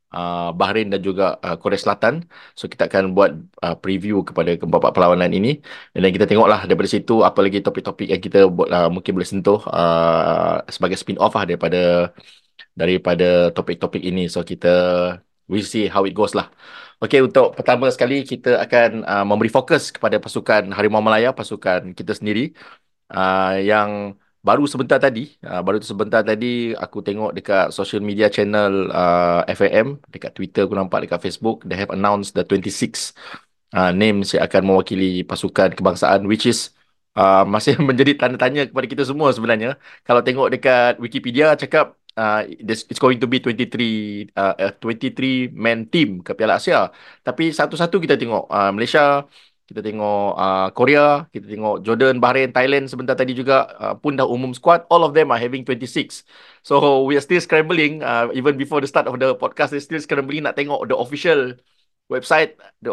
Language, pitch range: Malay, 95-135 Hz